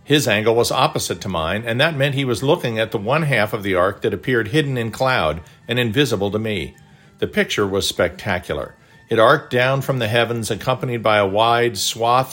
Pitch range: 105-130 Hz